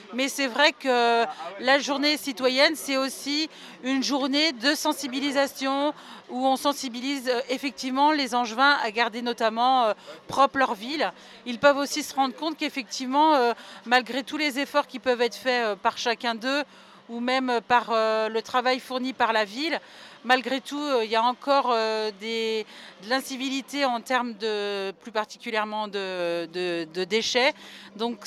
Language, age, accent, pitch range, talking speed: French, 40-59, French, 230-275 Hz, 150 wpm